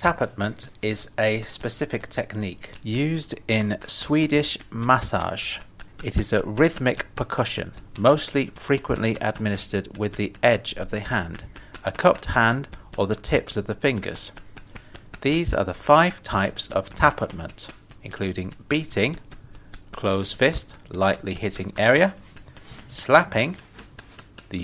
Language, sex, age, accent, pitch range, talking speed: English, male, 30-49, British, 95-120 Hz, 115 wpm